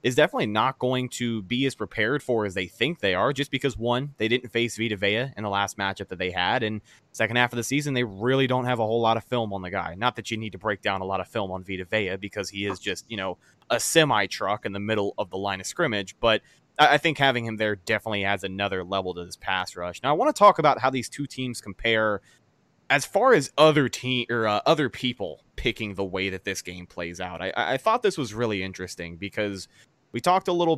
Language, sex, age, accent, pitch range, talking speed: English, male, 20-39, American, 100-125 Hz, 260 wpm